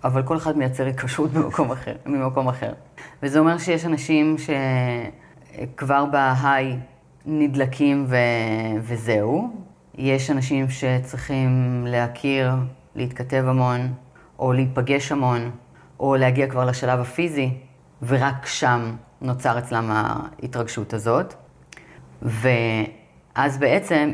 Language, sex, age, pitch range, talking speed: Hebrew, female, 30-49, 125-150 Hz, 95 wpm